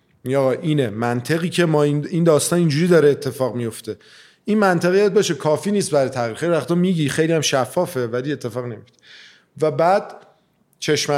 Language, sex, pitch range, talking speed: Persian, male, 120-150 Hz, 160 wpm